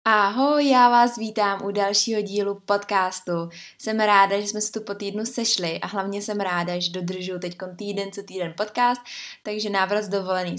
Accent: native